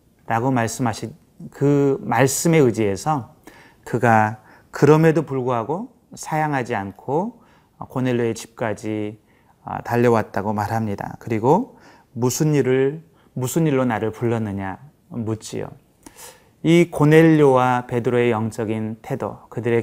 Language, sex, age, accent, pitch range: Korean, male, 30-49, native, 115-150 Hz